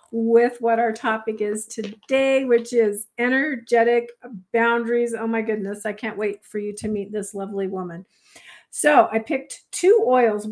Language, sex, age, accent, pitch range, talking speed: English, female, 50-69, American, 215-250 Hz, 160 wpm